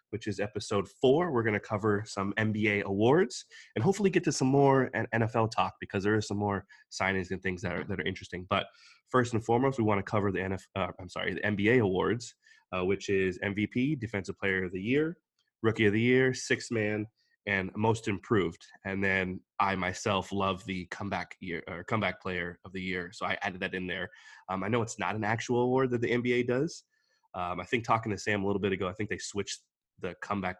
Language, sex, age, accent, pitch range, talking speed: English, male, 20-39, American, 95-115 Hz, 225 wpm